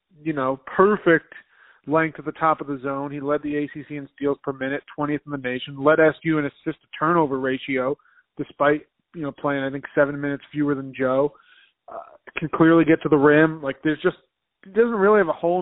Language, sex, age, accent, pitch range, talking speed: English, male, 30-49, American, 140-170 Hz, 215 wpm